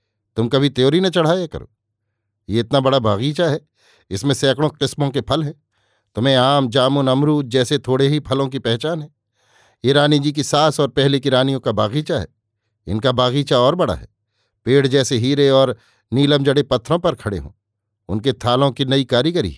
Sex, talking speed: male, 185 wpm